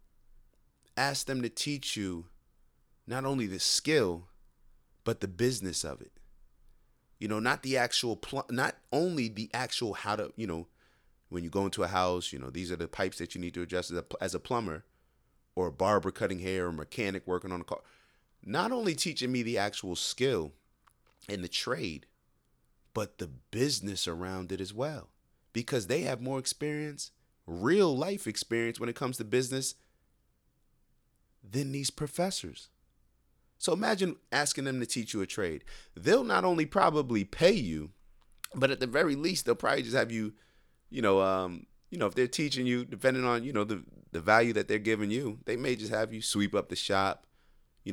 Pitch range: 90-125 Hz